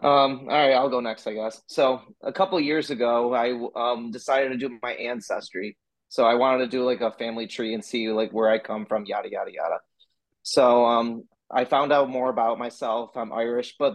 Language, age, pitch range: English, 20-39, 115-130 Hz